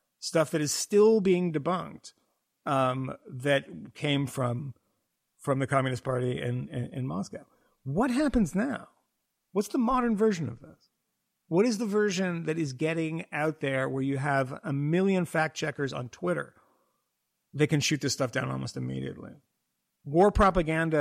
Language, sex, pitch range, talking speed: English, male, 130-175 Hz, 155 wpm